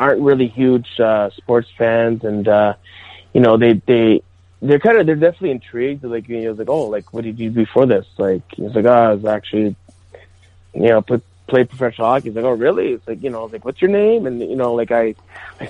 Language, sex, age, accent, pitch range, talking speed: English, male, 30-49, American, 110-135 Hz, 255 wpm